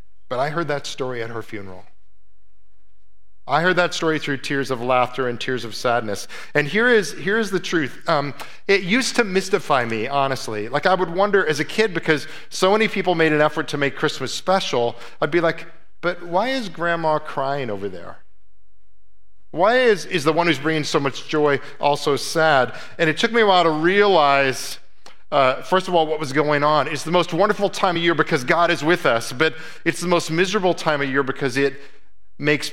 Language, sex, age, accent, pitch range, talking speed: English, male, 40-59, American, 130-175 Hz, 205 wpm